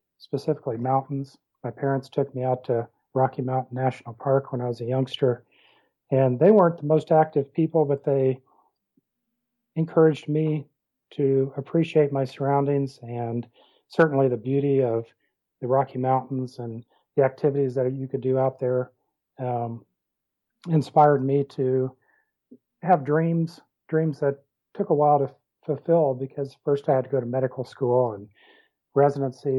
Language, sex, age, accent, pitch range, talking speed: English, male, 40-59, American, 130-150 Hz, 150 wpm